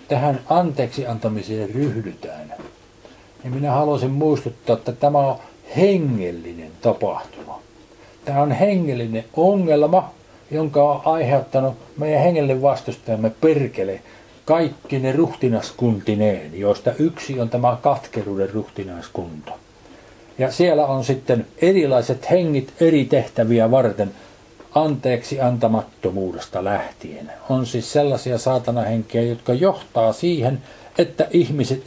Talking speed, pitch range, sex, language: 100 wpm, 115-150 Hz, male, Finnish